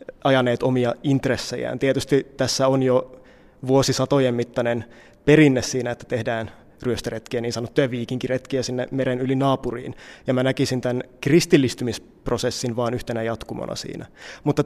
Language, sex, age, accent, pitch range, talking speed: Finnish, male, 20-39, native, 125-140 Hz, 125 wpm